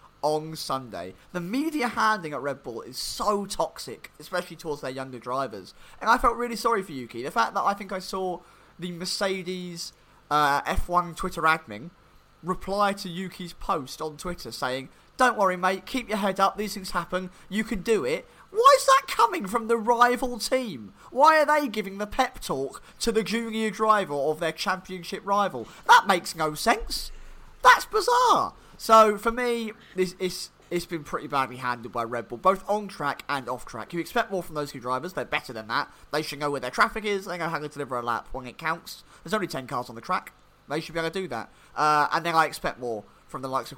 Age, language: 30-49, English